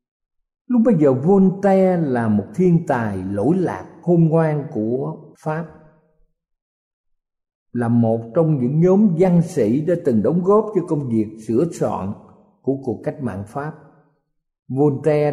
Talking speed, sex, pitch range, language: 140 wpm, male, 125-175 Hz, Vietnamese